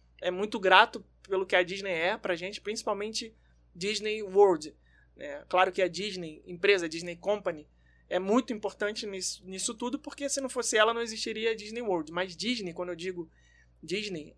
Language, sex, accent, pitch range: Portuguese, male, Brazilian, 180-220 Hz